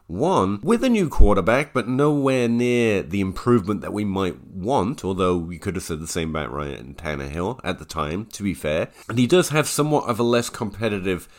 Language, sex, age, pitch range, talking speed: English, male, 30-49, 95-135 Hz, 205 wpm